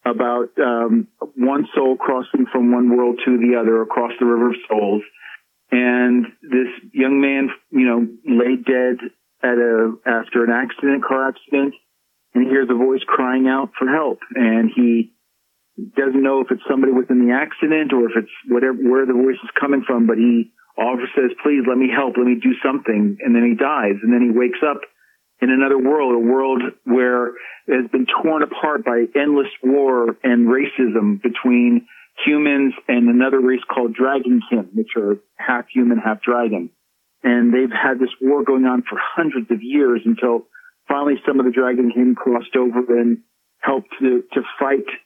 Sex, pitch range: male, 120-135 Hz